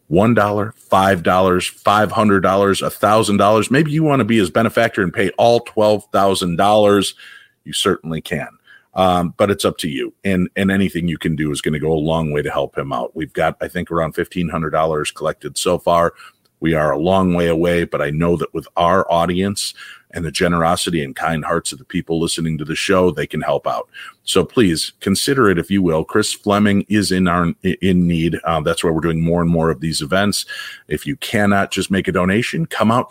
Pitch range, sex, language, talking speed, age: 85-100 Hz, male, English, 205 wpm, 40-59